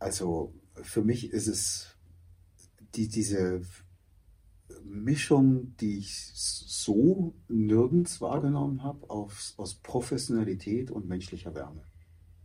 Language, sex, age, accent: English, male, 40-59, German